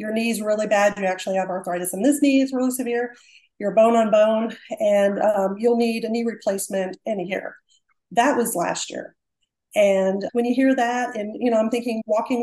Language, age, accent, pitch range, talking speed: English, 40-59, American, 205-245 Hz, 205 wpm